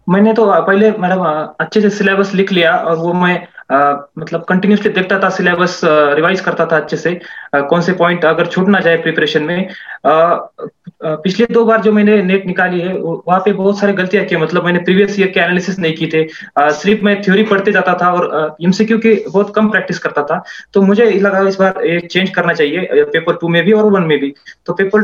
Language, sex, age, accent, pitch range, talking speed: Hindi, male, 20-39, native, 160-195 Hz, 220 wpm